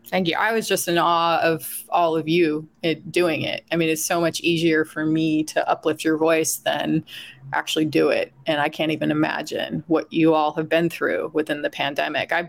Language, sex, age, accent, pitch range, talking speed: English, female, 30-49, American, 160-190 Hz, 210 wpm